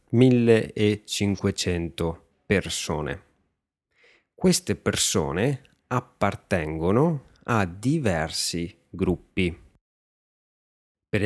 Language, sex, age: Italian, male, 30-49